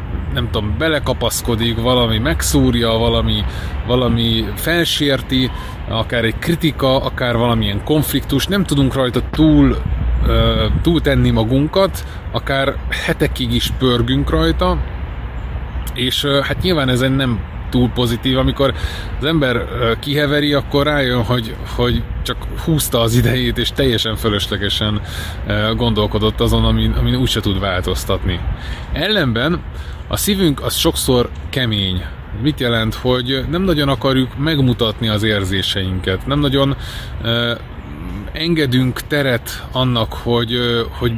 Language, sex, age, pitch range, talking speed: Hungarian, male, 20-39, 110-140 Hz, 120 wpm